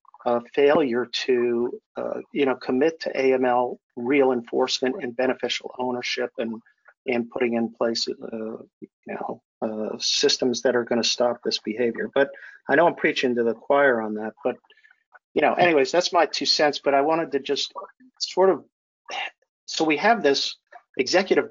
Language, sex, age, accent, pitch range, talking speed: English, male, 50-69, American, 120-145 Hz, 170 wpm